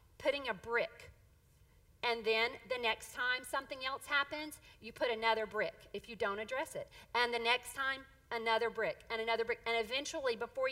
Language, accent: English, American